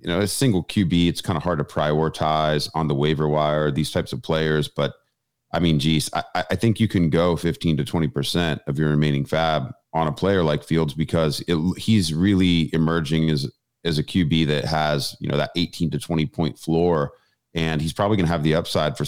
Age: 30-49